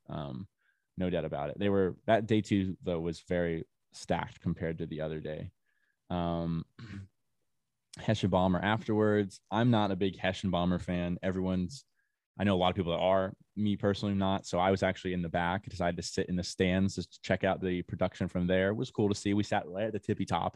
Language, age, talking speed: English, 20-39, 220 wpm